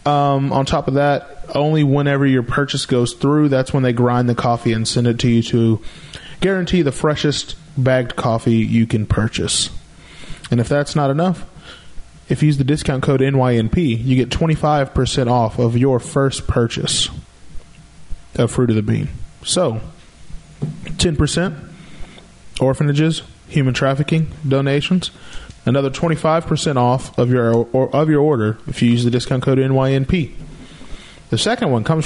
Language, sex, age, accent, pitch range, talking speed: English, male, 20-39, American, 120-150 Hz, 165 wpm